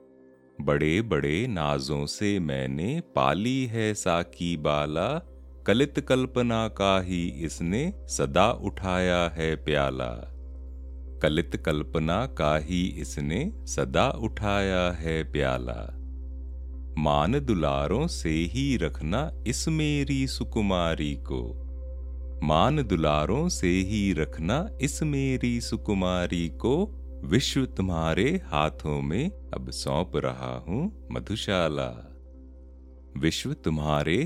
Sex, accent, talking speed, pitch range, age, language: male, native, 100 wpm, 65-95 Hz, 40-59, Hindi